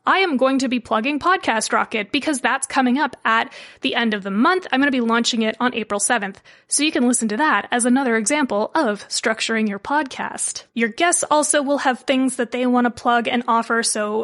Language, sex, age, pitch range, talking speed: English, female, 20-39, 225-295 Hz, 230 wpm